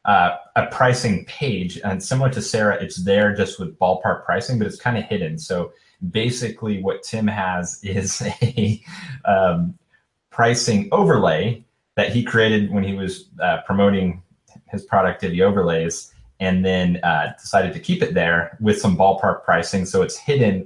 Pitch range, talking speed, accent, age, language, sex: 90-125 Hz, 165 wpm, American, 30-49, English, male